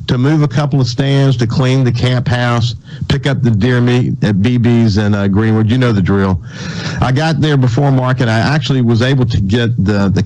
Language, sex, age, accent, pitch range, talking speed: English, male, 50-69, American, 100-130 Hz, 220 wpm